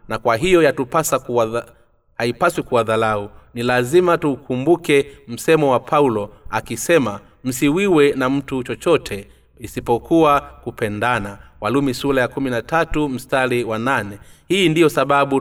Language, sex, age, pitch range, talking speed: Swahili, male, 30-49, 115-145 Hz, 115 wpm